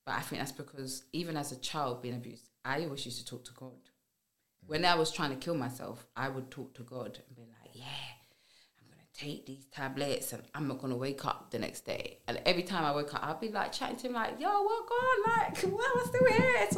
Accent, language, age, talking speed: British, English, 20-39, 265 wpm